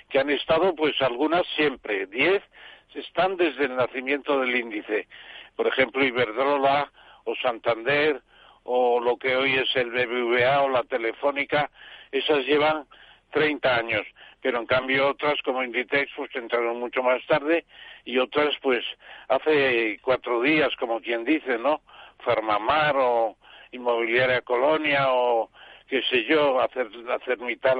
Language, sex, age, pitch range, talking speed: Spanish, male, 60-79, 125-155 Hz, 140 wpm